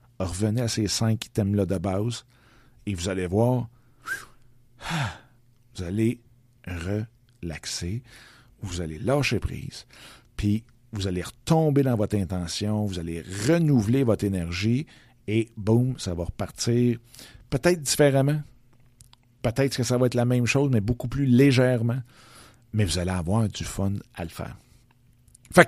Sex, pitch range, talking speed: male, 100-125 Hz, 140 wpm